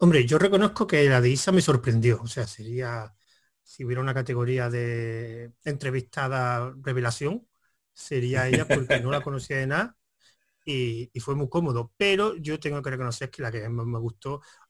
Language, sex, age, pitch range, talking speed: Spanish, male, 30-49, 125-155 Hz, 175 wpm